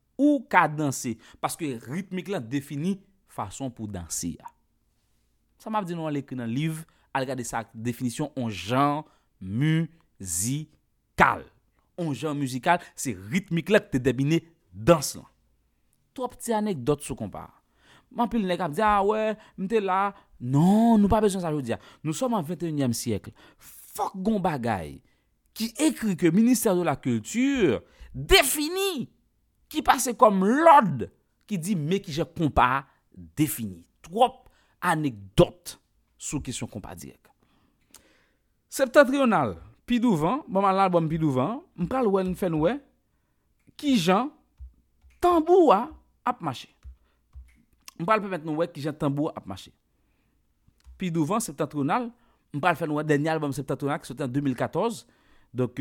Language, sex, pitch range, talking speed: English, male, 120-195 Hz, 145 wpm